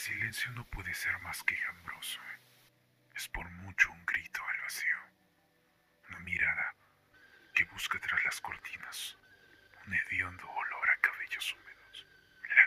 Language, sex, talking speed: Spanish, male, 135 wpm